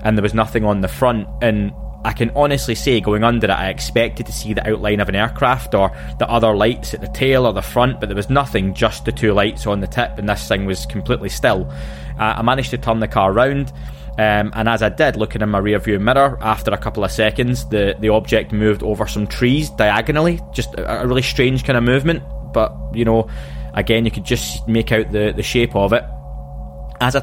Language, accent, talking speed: English, British, 235 wpm